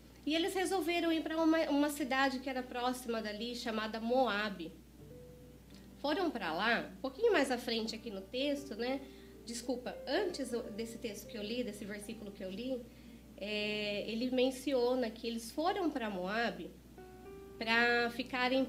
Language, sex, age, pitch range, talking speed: Portuguese, female, 20-39, 230-290 Hz, 155 wpm